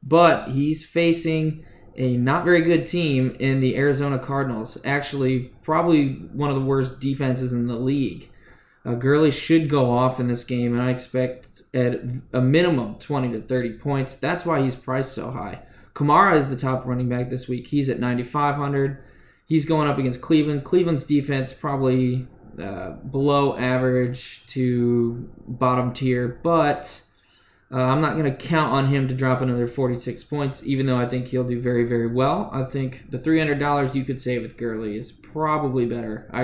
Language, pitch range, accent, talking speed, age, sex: English, 125-140 Hz, American, 175 wpm, 20-39, male